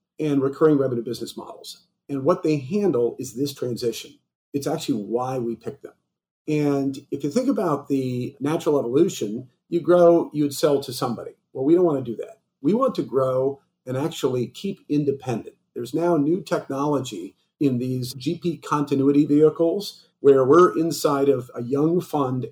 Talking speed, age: 170 wpm, 50-69